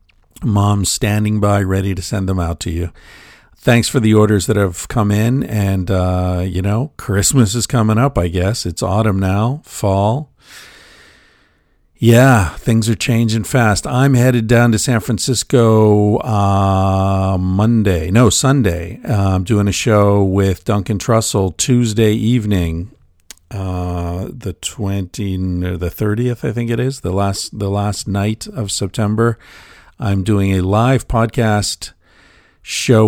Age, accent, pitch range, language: 50-69, American, 95-115 Hz, English